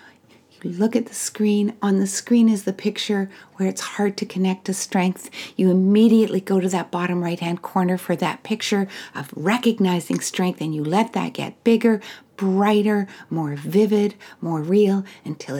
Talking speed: 165 wpm